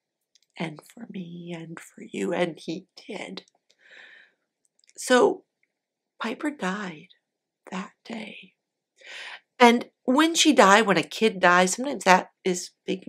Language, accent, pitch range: English, American, 170-240 Hz